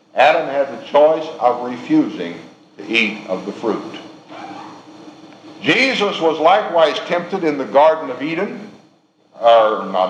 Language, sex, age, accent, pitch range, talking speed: English, male, 60-79, American, 135-165 Hz, 130 wpm